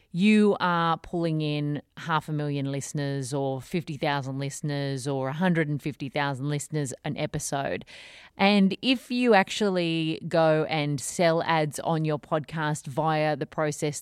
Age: 30-49